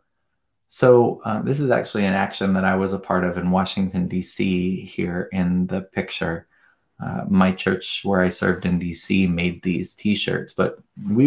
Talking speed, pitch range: 175 wpm, 90-105 Hz